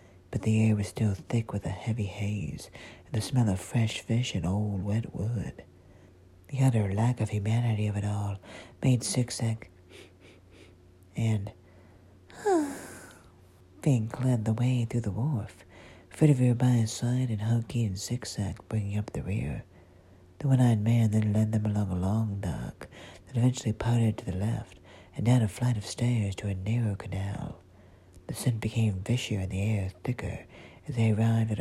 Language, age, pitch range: English, 40-59, 95-115 Hz